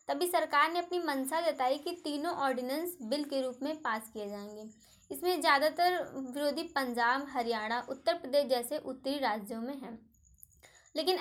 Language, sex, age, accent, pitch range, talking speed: Hindi, female, 20-39, native, 235-305 Hz, 155 wpm